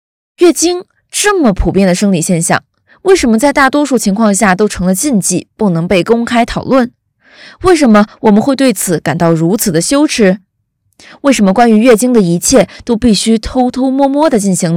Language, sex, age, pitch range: Chinese, female, 20-39, 175-245 Hz